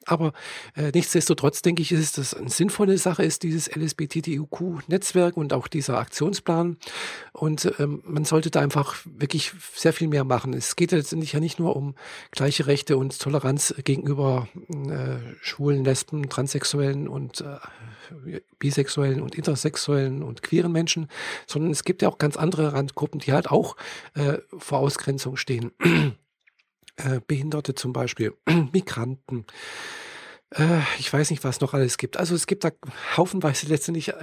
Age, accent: 50-69, German